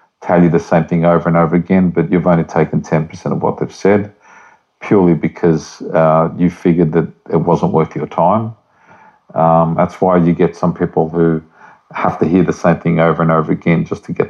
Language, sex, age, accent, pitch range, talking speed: English, male, 50-69, Australian, 80-90 Hz, 210 wpm